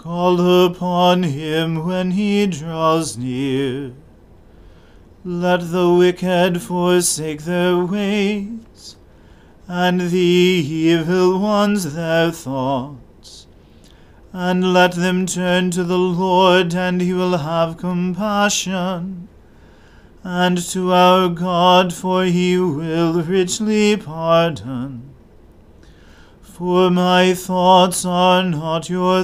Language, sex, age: English, male, 40-59